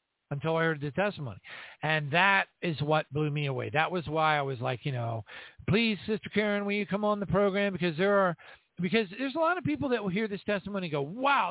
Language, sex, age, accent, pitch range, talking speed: English, male, 50-69, American, 165-215 Hz, 240 wpm